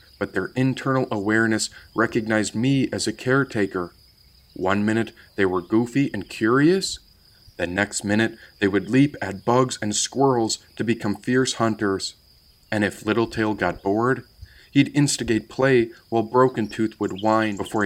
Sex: male